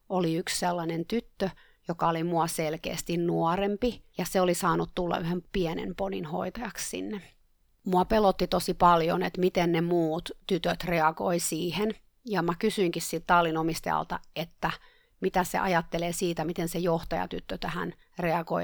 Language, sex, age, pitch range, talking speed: Finnish, female, 30-49, 165-185 Hz, 140 wpm